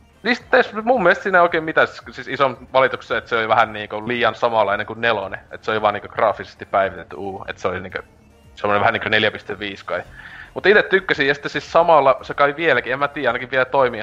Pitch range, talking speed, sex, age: 110-150 Hz, 225 wpm, male, 20-39